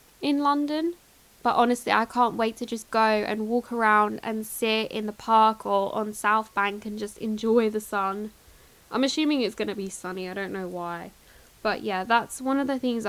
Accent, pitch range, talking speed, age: British, 210-245 Hz, 200 wpm, 10-29